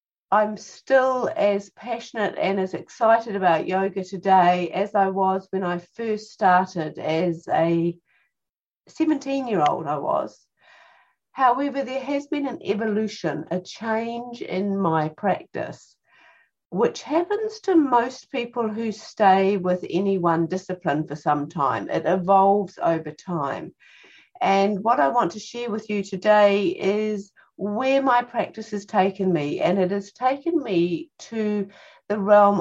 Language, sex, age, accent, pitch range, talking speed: English, female, 50-69, British, 180-245 Hz, 140 wpm